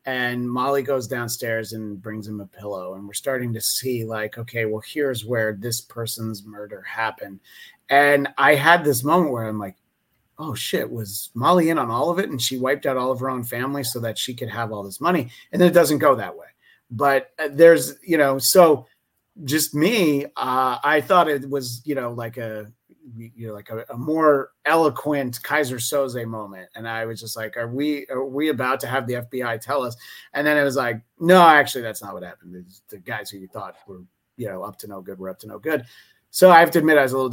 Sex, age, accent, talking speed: male, 30-49, American, 230 wpm